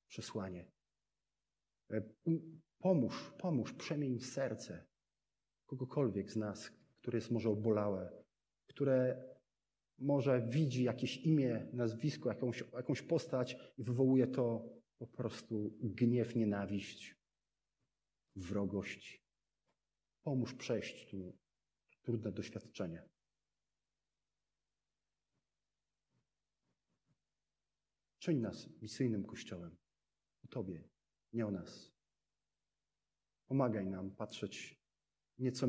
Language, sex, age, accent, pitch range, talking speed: Polish, male, 40-59, native, 105-130 Hz, 75 wpm